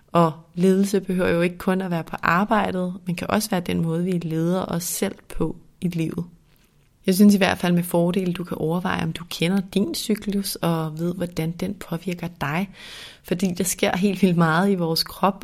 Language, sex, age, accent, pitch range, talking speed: Danish, female, 30-49, native, 165-190 Hz, 205 wpm